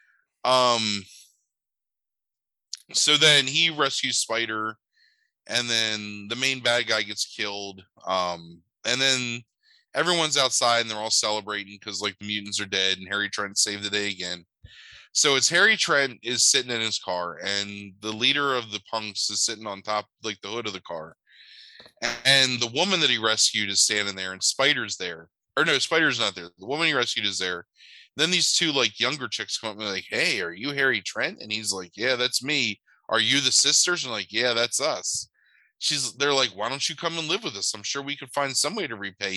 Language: English